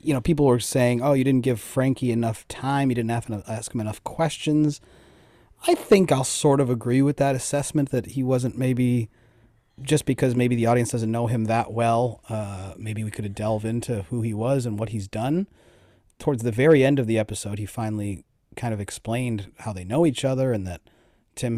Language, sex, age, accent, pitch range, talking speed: English, male, 30-49, American, 110-135 Hz, 215 wpm